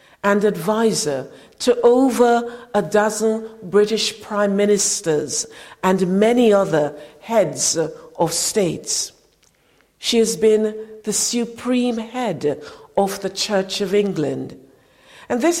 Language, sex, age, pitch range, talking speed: English, female, 50-69, 165-220 Hz, 110 wpm